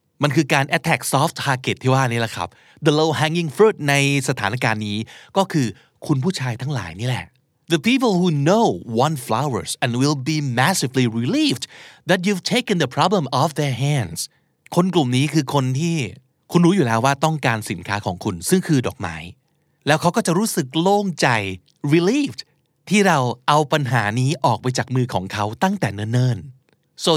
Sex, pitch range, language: male, 125-165 Hz, Thai